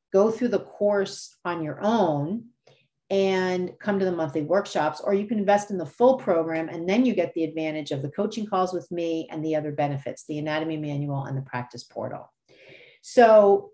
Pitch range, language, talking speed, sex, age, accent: 155-210 Hz, English, 195 wpm, female, 40-59, American